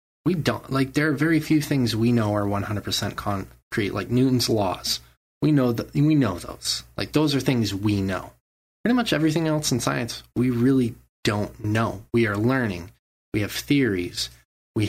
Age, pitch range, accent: 20-39, 95-135 Hz, American